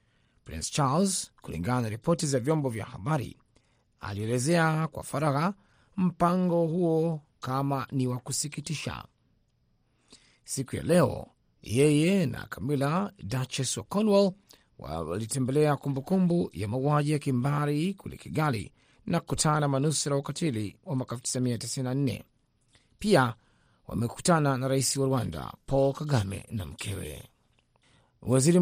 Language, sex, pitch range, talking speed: Swahili, male, 125-160 Hz, 115 wpm